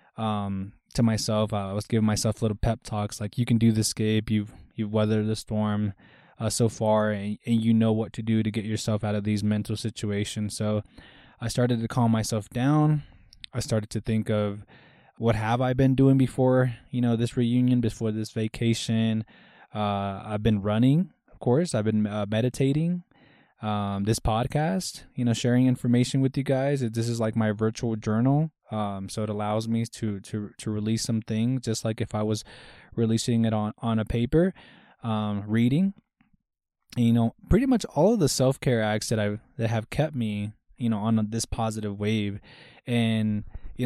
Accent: American